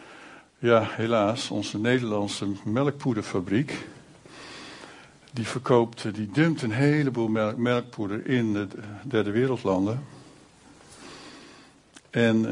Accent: Dutch